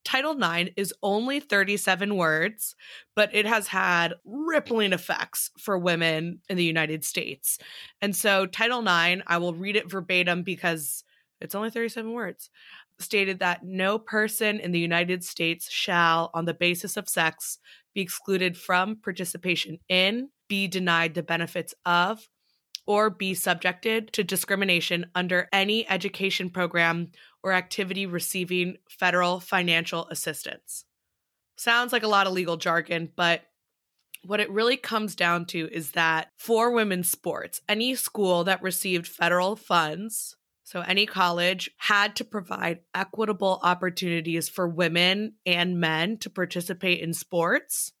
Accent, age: American, 20-39